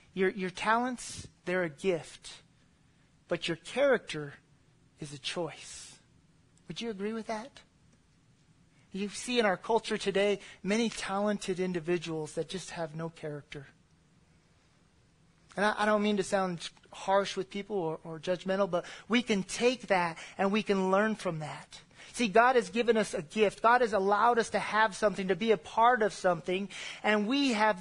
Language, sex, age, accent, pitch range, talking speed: English, male, 40-59, American, 190-240 Hz, 170 wpm